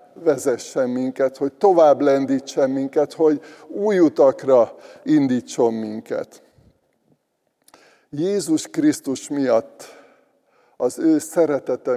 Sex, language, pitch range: male, Hungarian, 125-175 Hz